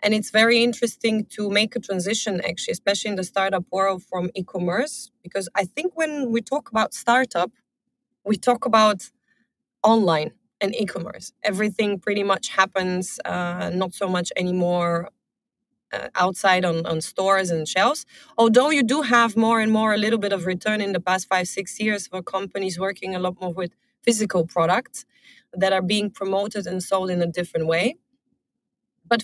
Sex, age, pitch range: female, 20-39, 185-235 Hz